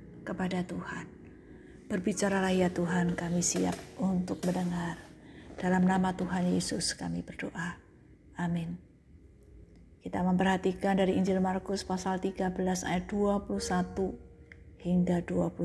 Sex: female